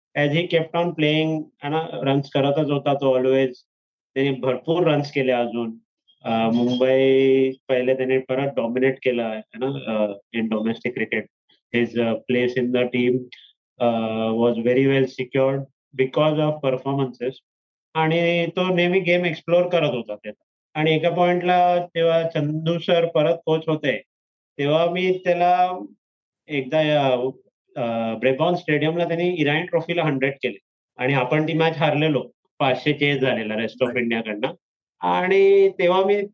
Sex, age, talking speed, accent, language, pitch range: male, 30-49, 125 wpm, native, Marathi, 125-160 Hz